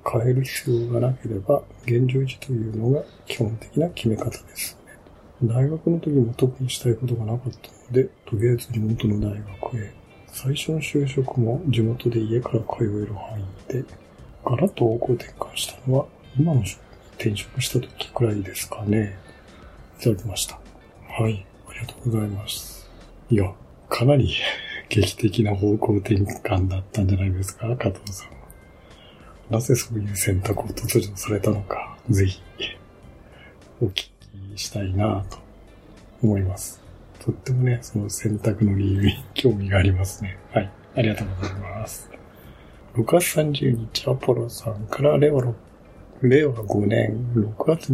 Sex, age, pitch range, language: male, 60-79, 100-120 Hz, Japanese